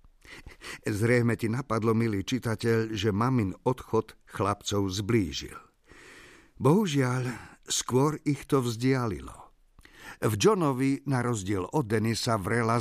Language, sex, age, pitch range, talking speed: Slovak, male, 50-69, 105-135 Hz, 105 wpm